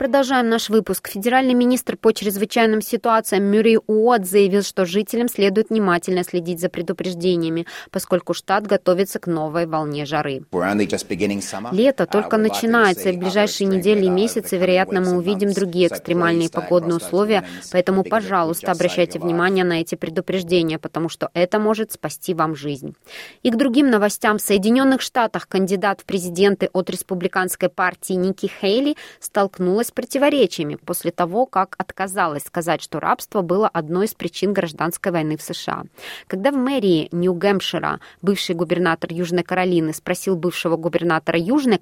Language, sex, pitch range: Russian, female, 175-215 Hz